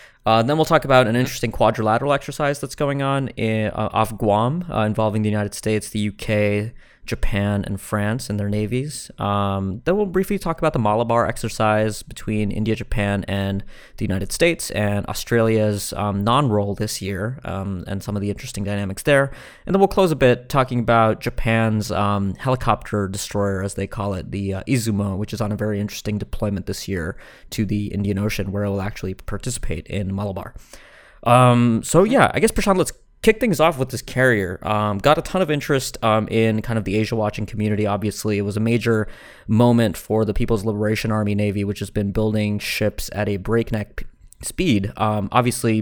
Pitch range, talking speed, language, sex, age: 100-125 Hz, 190 wpm, English, male, 20-39